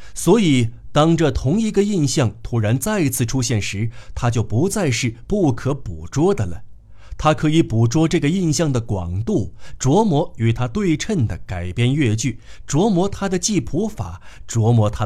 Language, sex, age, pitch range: Chinese, male, 50-69, 105-155 Hz